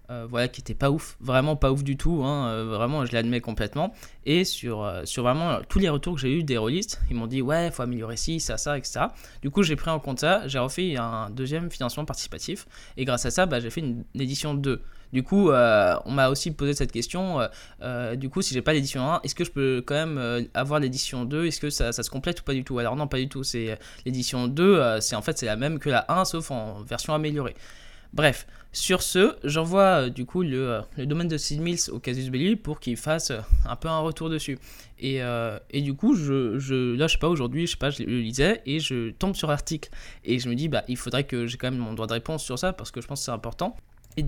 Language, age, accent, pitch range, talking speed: French, 20-39, French, 120-155 Hz, 270 wpm